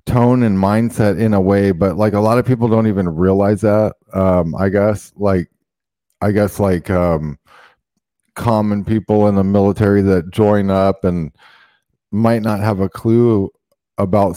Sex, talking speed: male, 165 wpm